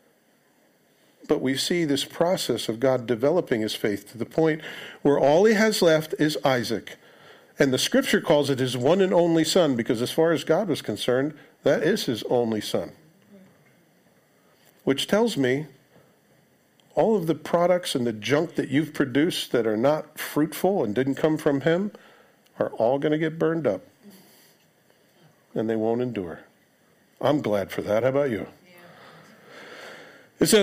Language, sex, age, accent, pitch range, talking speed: English, male, 50-69, American, 130-180 Hz, 165 wpm